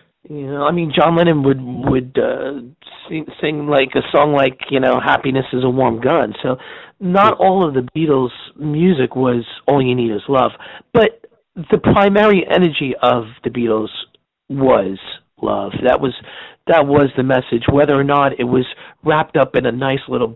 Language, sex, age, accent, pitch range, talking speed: English, male, 40-59, American, 130-170 Hz, 175 wpm